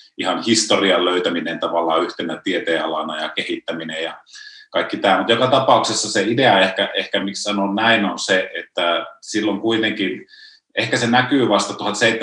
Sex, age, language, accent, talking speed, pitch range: male, 30-49, Finnish, native, 145 wpm, 95-110 Hz